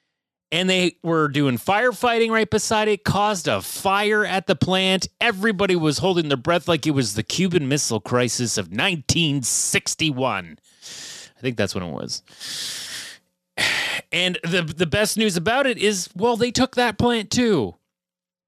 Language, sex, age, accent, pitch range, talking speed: English, male, 30-49, American, 155-220 Hz, 155 wpm